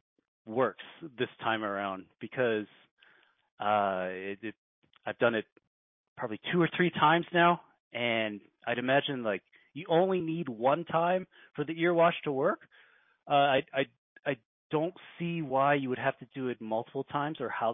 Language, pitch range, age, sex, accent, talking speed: English, 110-160 Hz, 30-49, male, American, 160 wpm